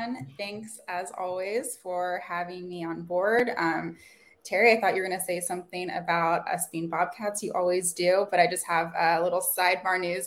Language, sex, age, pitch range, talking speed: English, female, 20-39, 175-215 Hz, 195 wpm